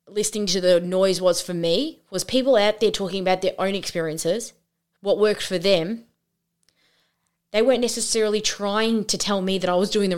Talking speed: 190 wpm